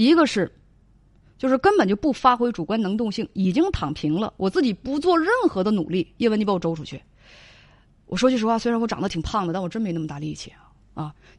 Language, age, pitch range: Chinese, 20-39, 170-250 Hz